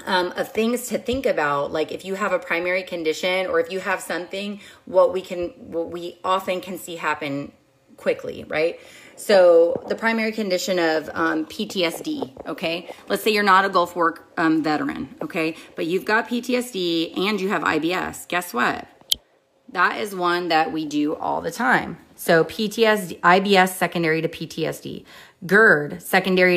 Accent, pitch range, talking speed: American, 165-200 Hz, 165 wpm